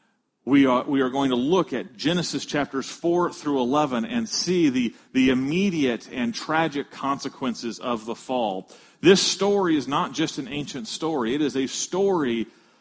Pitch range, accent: 130-180 Hz, American